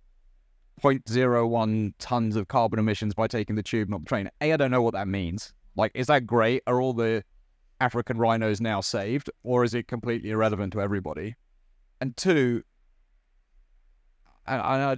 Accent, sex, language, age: British, male, English, 30-49